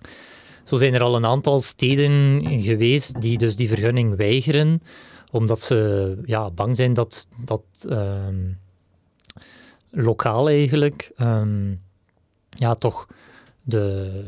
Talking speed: 115 wpm